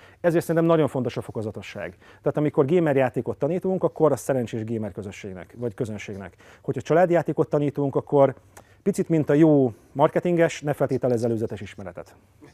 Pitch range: 120-165 Hz